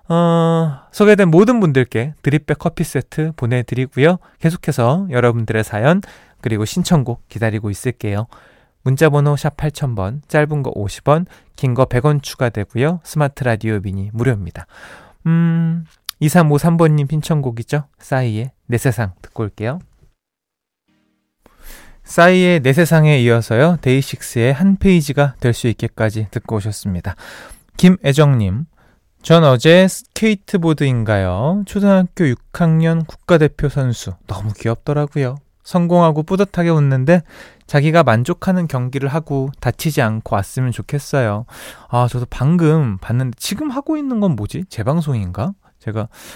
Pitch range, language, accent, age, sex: 115-165 Hz, Korean, native, 20-39, male